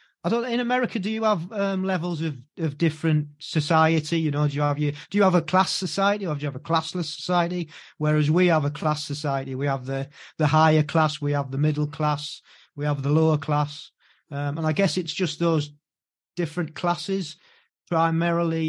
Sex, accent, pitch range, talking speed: male, British, 140-165 Hz, 205 wpm